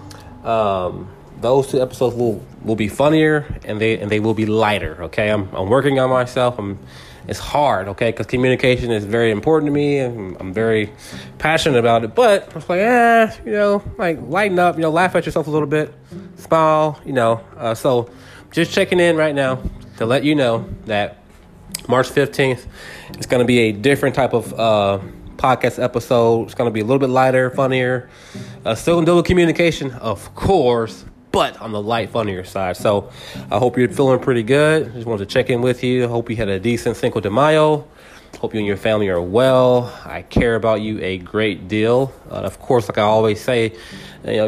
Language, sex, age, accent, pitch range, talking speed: English, male, 20-39, American, 105-135 Hz, 210 wpm